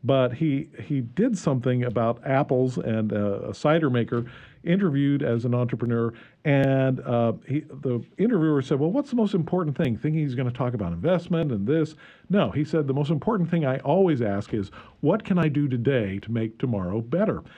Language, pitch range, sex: English, 115-155 Hz, male